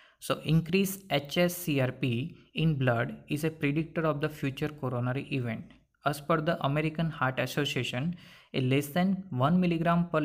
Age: 20-39